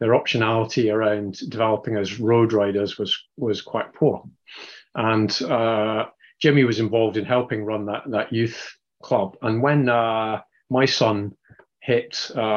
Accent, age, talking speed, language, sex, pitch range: British, 30-49, 140 wpm, English, male, 105-120 Hz